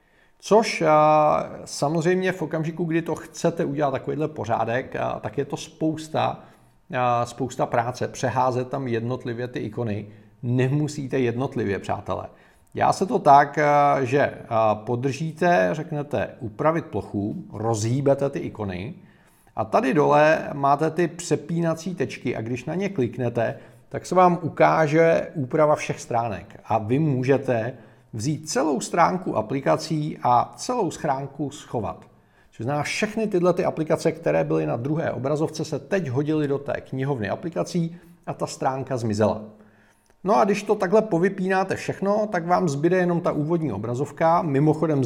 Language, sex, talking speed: Czech, male, 135 wpm